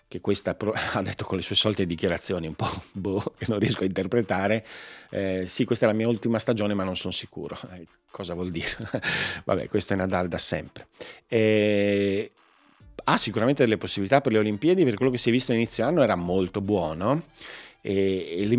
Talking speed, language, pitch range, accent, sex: 200 wpm, Italian, 95-115 Hz, native, male